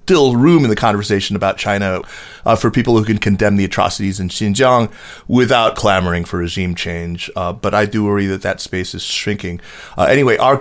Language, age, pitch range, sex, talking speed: English, 30-49, 95-110 Hz, male, 200 wpm